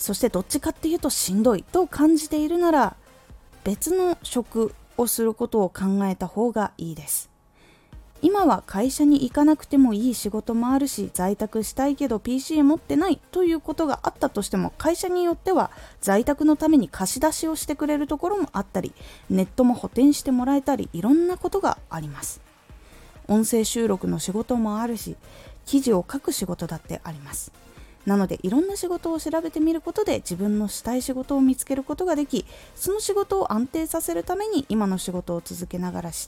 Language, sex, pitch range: Japanese, female, 195-305 Hz